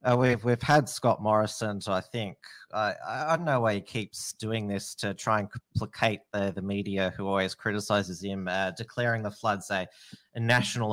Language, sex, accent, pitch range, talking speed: English, male, Australian, 95-115 Hz, 205 wpm